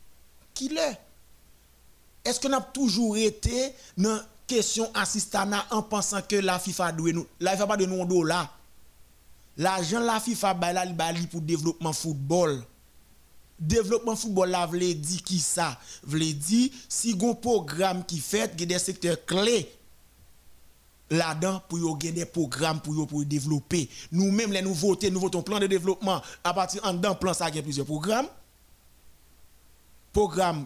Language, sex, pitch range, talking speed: French, male, 140-195 Hz, 125 wpm